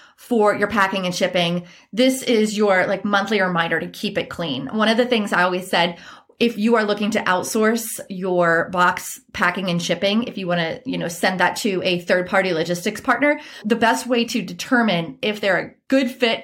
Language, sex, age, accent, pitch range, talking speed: English, female, 30-49, American, 185-240 Hz, 210 wpm